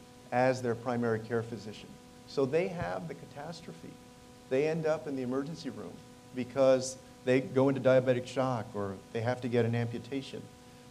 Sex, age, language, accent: male, 40-59, English, American